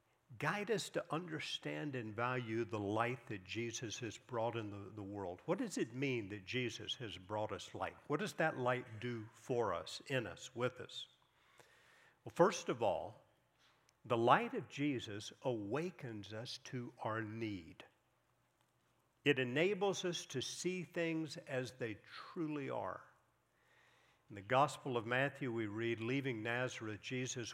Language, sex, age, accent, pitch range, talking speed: English, male, 50-69, American, 115-145 Hz, 155 wpm